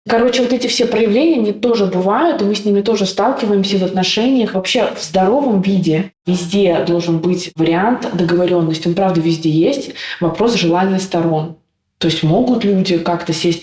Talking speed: 165 wpm